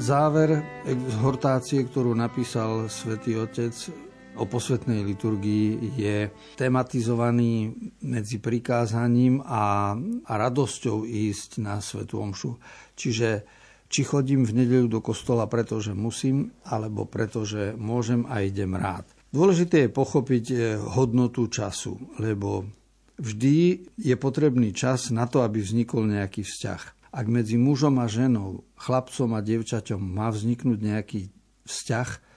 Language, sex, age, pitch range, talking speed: Slovak, male, 50-69, 110-130 Hz, 115 wpm